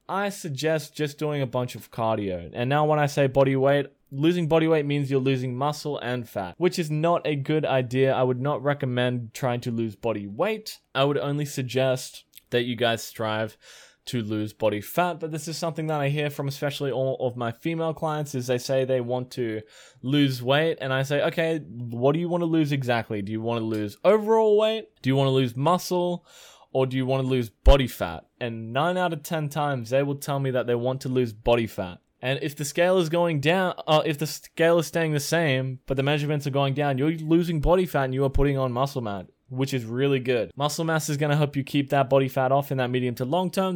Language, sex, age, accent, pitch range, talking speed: English, male, 10-29, Australian, 125-155 Hz, 235 wpm